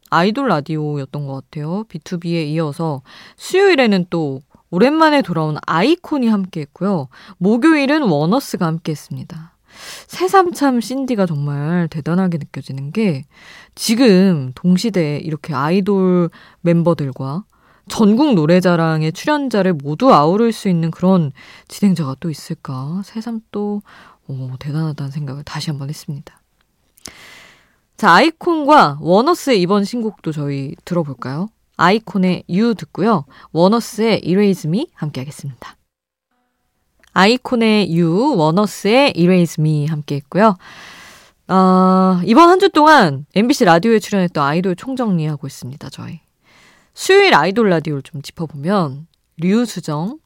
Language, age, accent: Korean, 20-39, native